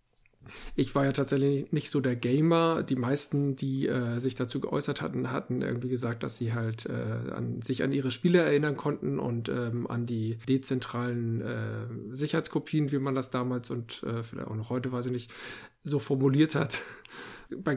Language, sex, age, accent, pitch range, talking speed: German, male, 50-69, German, 125-145 Hz, 180 wpm